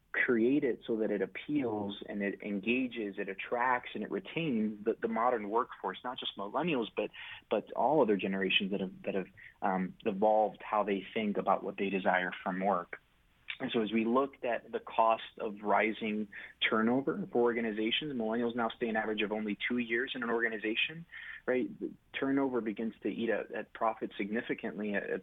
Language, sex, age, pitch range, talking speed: English, male, 30-49, 100-120 Hz, 180 wpm